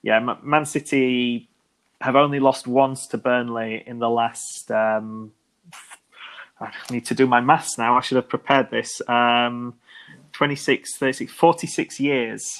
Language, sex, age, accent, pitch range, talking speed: English, male, 20-39, British, 115-130 Hz, 145 wpm